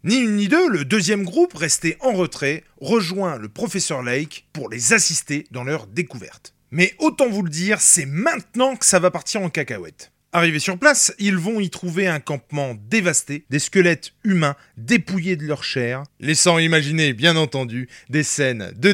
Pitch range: 135-195 Hz